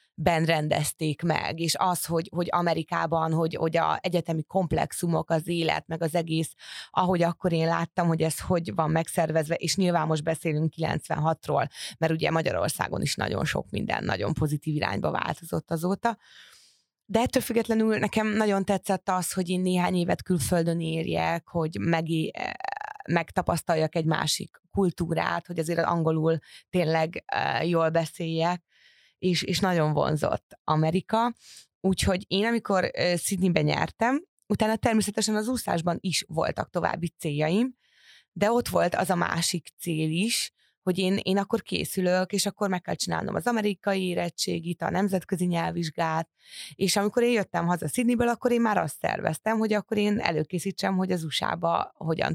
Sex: female